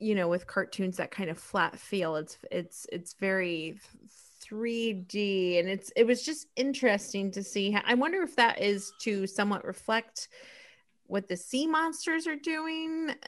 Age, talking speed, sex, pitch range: 20-39, 165 wpm, female, 195-240 Hz